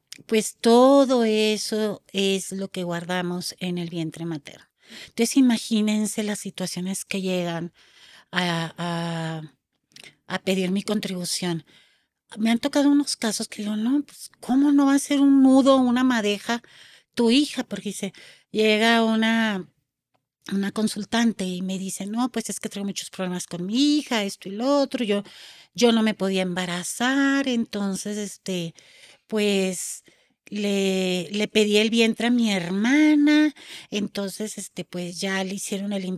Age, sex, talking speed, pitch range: 40-59, female, 150 wpm, 185-235 Hz